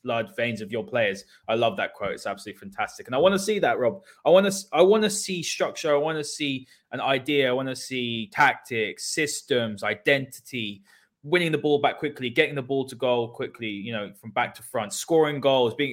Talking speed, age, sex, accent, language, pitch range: 225 wpm, 20-39, male, British, English, 120-150 Hz